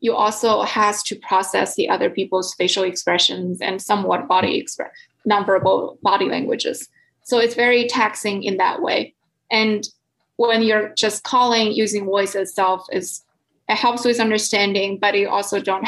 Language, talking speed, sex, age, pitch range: English, 155 wpm, female, 20-39, 195-235 Hz